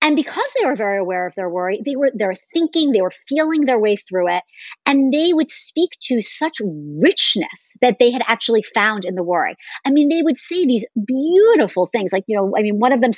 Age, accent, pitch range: 40-59, American, 190-270 Hz